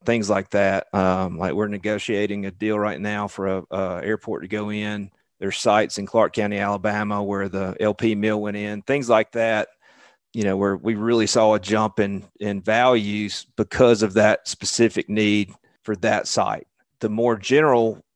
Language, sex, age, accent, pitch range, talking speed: English, male, 40-59, American, 100-110 Hz, 180 wpm